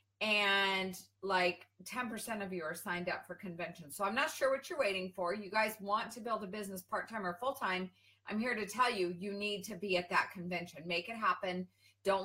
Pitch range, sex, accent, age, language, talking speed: 180-240 Hz, female, American, 40-59, English, 215 wpm